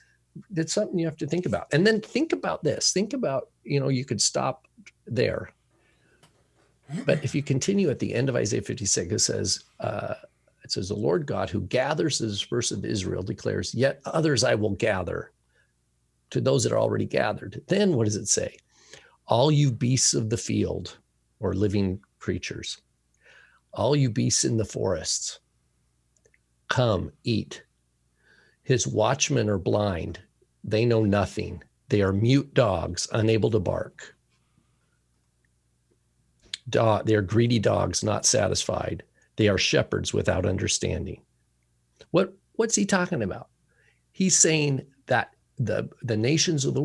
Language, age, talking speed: English, 50-69, 150 wpm